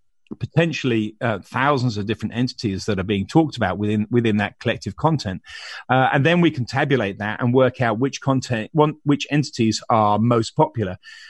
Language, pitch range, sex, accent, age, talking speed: English, 110-140 Hz, male, British, 40-59, 175 wpm